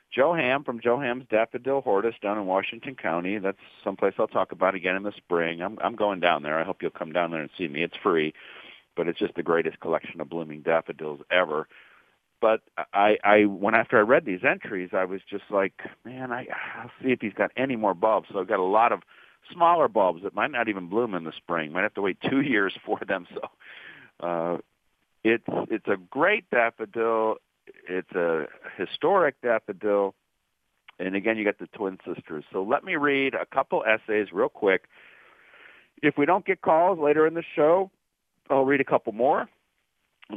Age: 50-69